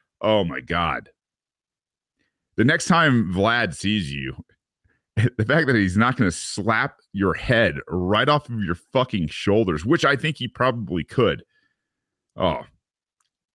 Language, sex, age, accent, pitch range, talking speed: English, male, 40-59, American, 75-105 Hz, 140 wpm